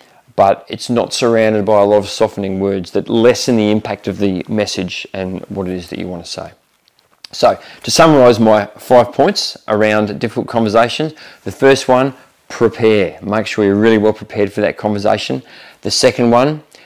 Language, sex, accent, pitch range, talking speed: English, male, Australian, 100-125 Hz, 180 wpm